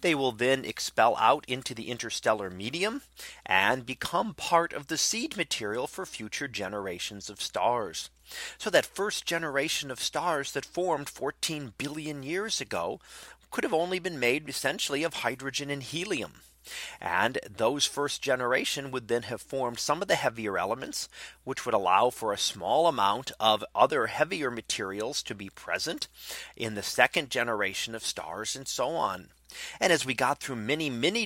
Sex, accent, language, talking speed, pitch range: male, American, English, 165 wpm, 120-155 Hz